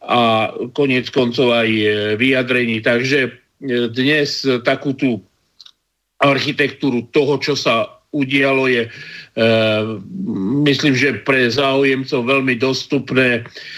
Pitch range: 120-140 Hz